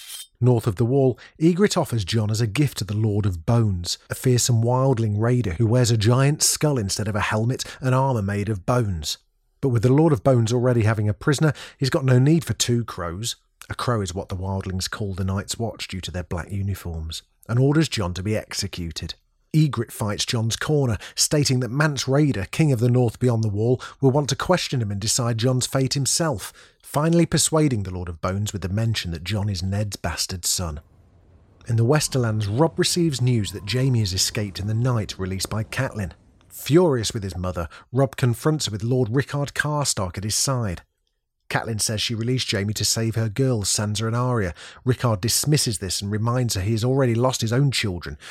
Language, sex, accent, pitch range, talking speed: English, male, British, 95-130 Hz, 205 wpm